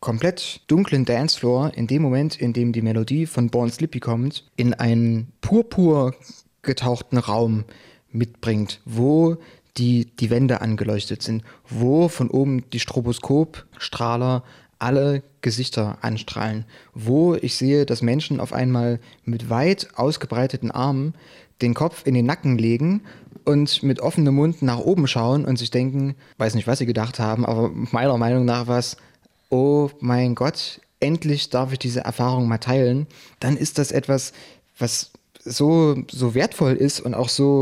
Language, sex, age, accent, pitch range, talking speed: German, male, 30-49, German, 120-140 Hz, 150 wpm